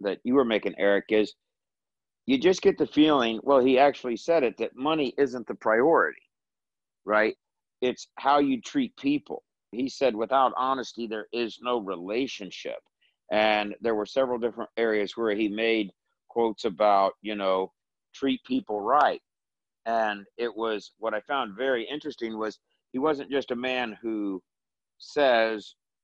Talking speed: 155 wpm